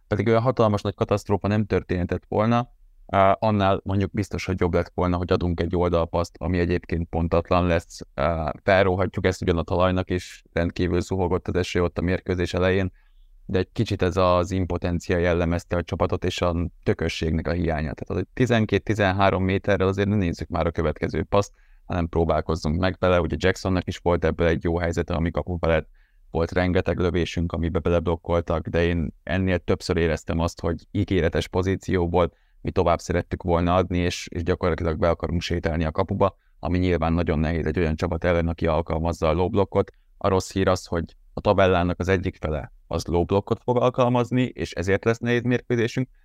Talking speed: 175 wpm